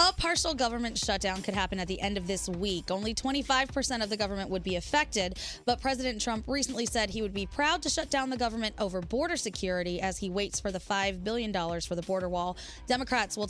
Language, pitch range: English, 185-255 Hz